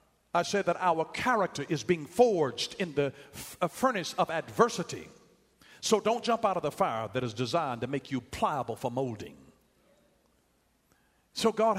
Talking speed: 165 wpm